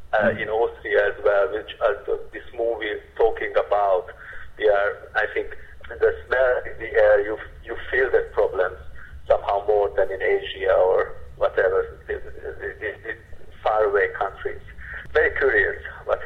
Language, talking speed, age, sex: German, 160 wpm, 50-69, male